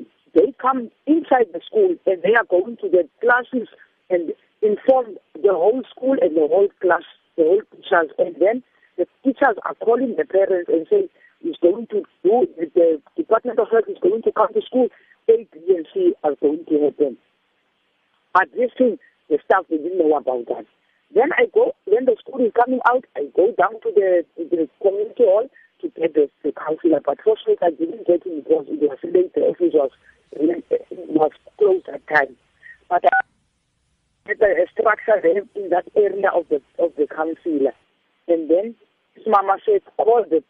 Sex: male